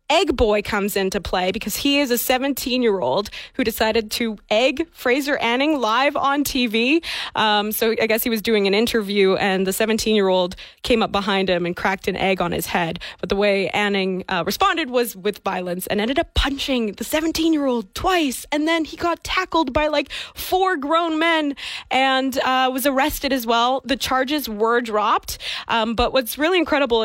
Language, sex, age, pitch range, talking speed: English, female, 20-39, 205-265 Hz, 195 wpm